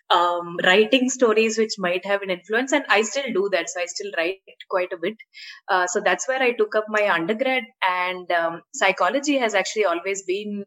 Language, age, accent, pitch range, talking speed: English, 20-39, Indian, 185-225 Hz, 200 wpm